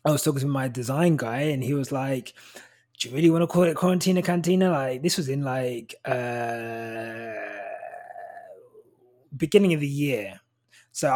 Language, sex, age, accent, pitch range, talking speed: English, male, 20-39, British, 115-140 Hz, 160 wpm